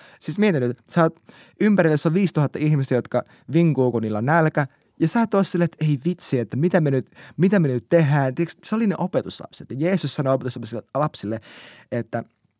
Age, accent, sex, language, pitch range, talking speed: 20-39, native, male, Finnish, 110-155 Hz, 190 wpm